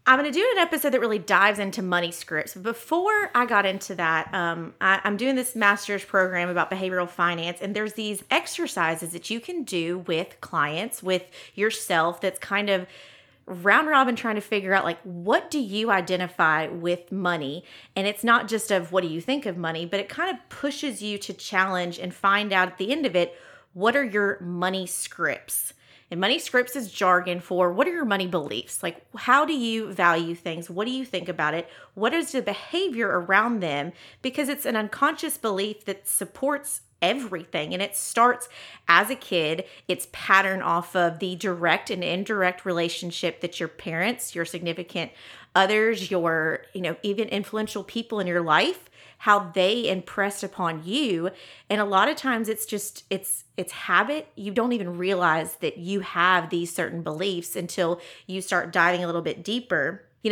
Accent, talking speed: American, 185 wpm